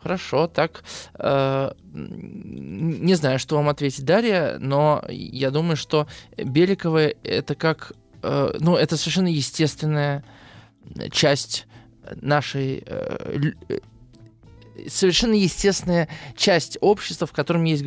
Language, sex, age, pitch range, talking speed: Russian, male, 20-39, 135-165 Hz, 105 wpm